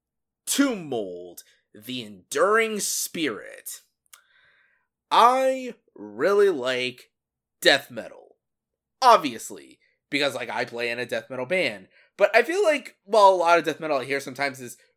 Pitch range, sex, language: 135-170 Hz, male, English